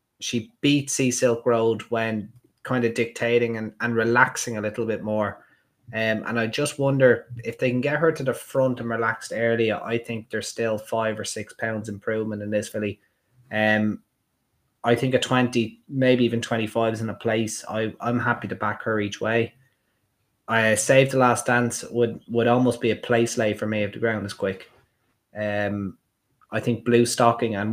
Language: English